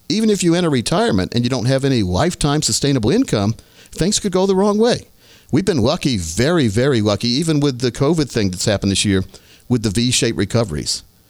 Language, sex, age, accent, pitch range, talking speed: English, male, 50-69, American, 105-135 Hz, 200 wpm